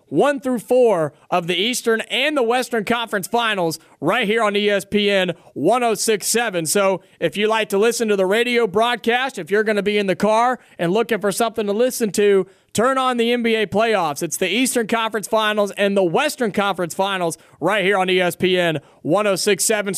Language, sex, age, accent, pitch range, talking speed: English, male, 30-49, American, 185-235 Hz, 185 wpm